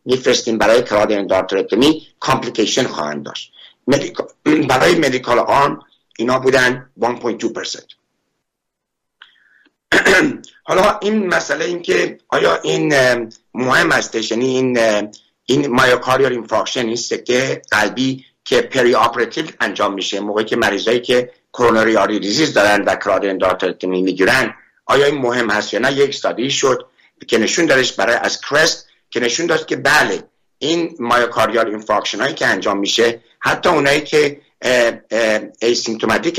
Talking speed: 130 wpm